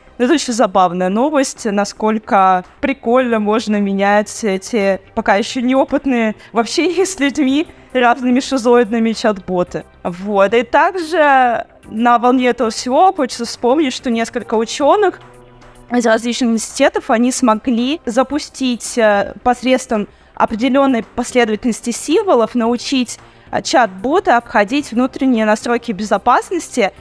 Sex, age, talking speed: female, 20-39, 100 wpm